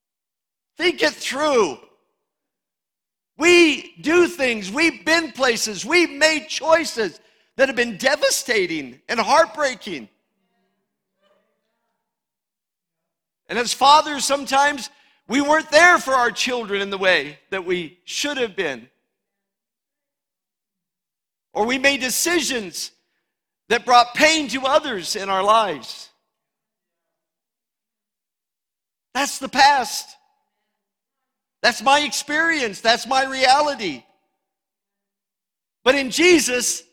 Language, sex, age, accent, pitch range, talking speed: English, male, 50-69, American, 210-290 Hz, 95 wpm